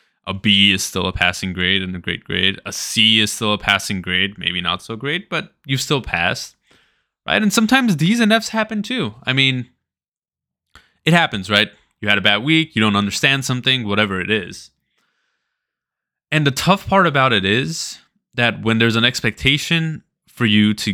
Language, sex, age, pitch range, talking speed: English, male, 20-39, 100-135 Hz, 190 wpm